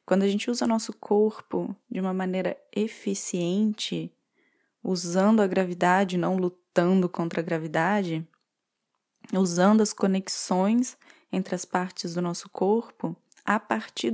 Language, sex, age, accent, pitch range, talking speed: Portuguese, female, 20-39, Brazilian, 185-235 Hz, 125 wpm